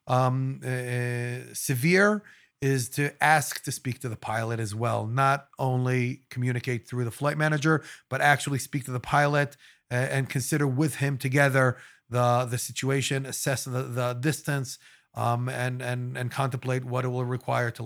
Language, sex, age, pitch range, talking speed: English, male, 30-49, 125-145 Hz, 165 wpm